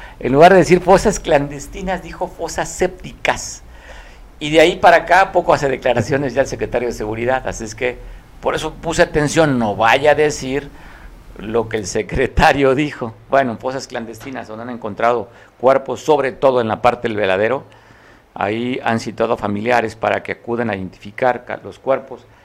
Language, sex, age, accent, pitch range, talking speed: Spanish, male, 50-69, Mexican, 105-135 Hz, 170 wpm